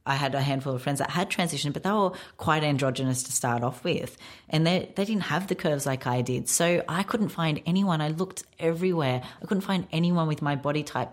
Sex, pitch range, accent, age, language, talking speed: female, 130-155 Hz, Australian, 30-49, English, 235 wpm